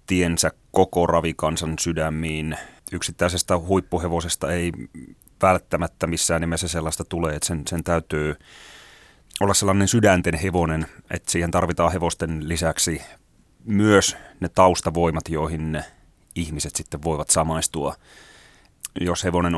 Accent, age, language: native, 30-49, Finnish